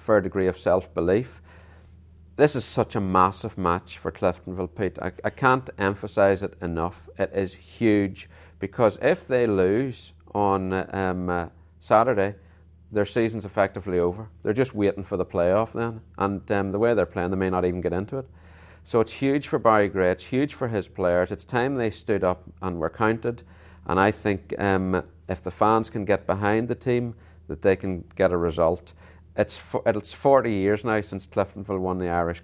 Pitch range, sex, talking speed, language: 85-105 Hz, male, 185 wpm, English